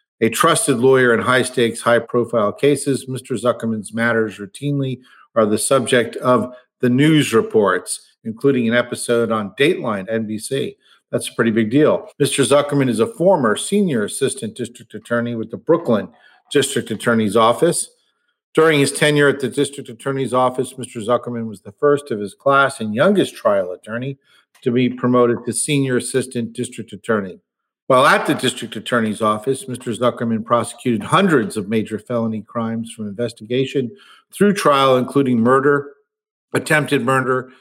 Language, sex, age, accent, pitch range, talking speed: English, male, 50-69, American, 115-135 Hz, 150 wpm